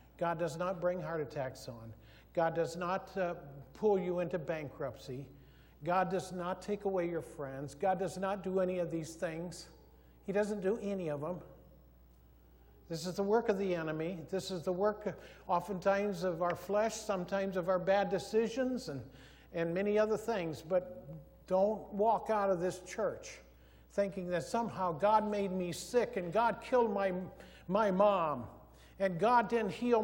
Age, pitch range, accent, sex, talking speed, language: 60-79, 160-210 Hz, American, male, 170 wpm, English